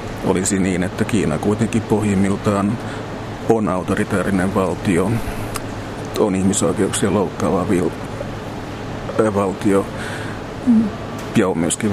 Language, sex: Finnish, male